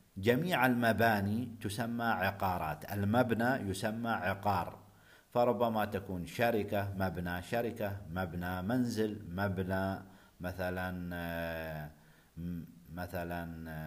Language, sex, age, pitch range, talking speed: Arabic, male, 50-69, 85-105 Hz, 70 wpm